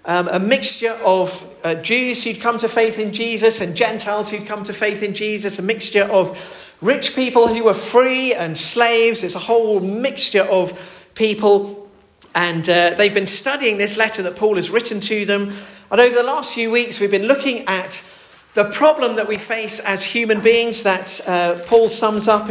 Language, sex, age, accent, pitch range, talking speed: English, male, 40-59, British, 185-230 Hz, 190 wpm